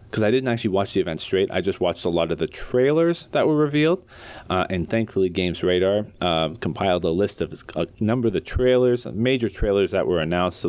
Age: 30-49